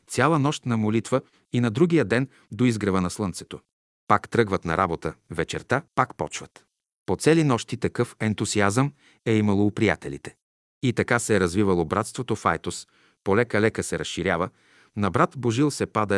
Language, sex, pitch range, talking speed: Bulgarian, male, 95-125 Hz, 165 wpm